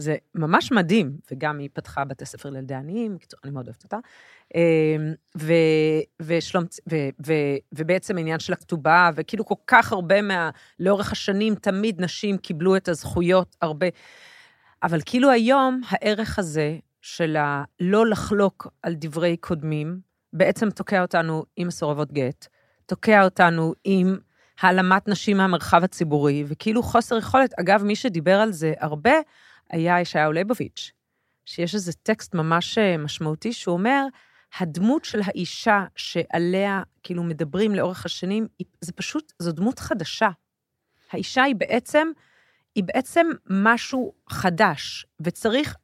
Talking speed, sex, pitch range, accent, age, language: 130 wpm, female, 160-215 Hz, native, 40-59, Hebrew